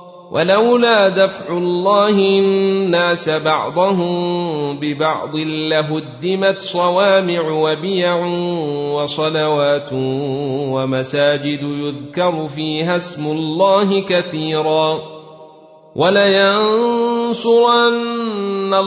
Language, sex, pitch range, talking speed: Arabic, male, 155-195 Hz, 55 wpm